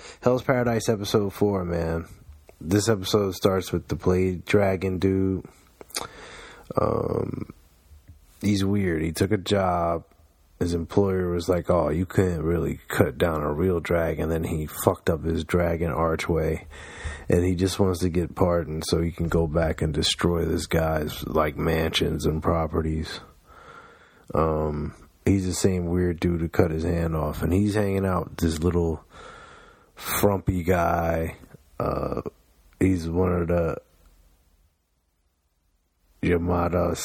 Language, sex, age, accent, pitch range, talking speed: English, male, 30-49, American, 80-95 Hz, 140 wpm